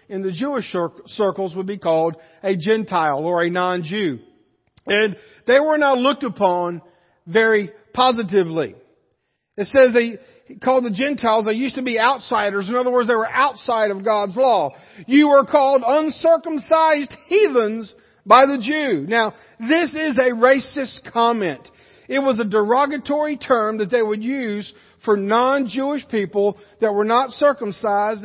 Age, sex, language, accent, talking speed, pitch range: 50-69, male, English, American, 150 wpm, 205-250 Hz